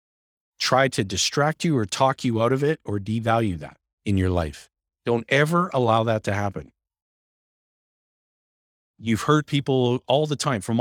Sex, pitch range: male, 90-130 Hz